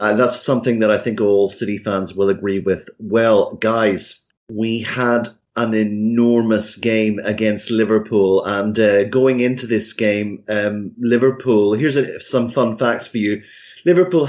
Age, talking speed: 30-49, 150 wpm